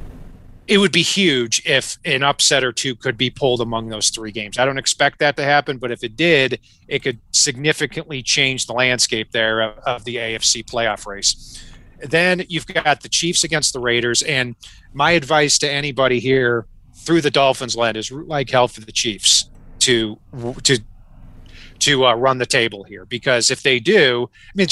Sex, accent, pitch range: male, American, 115-150 Hz